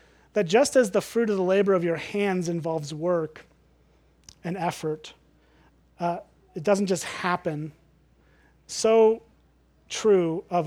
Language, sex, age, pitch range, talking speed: English, male, 30-49, 155-195 Hz, 130 wpm